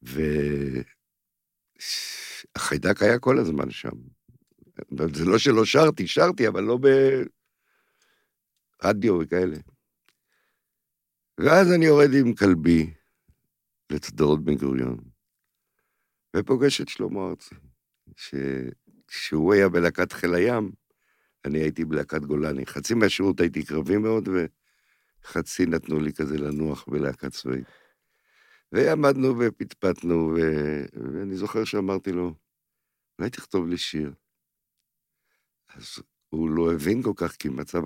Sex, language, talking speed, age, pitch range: male, Hebrew, 105 wpm, 60-79, 75-100 Hz